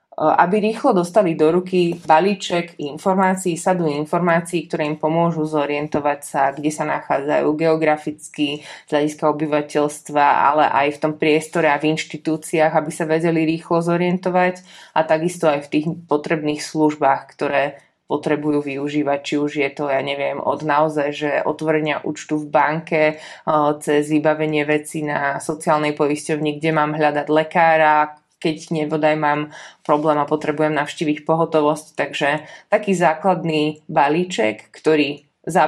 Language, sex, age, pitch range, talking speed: Slovak, female, 20-39, 150-170 Hz, 140 wpm